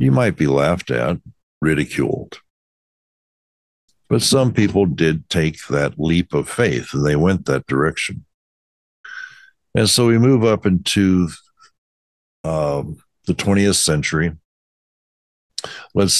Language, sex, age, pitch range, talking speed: English, male, 60-79, 75-100 Hz, 115 wpm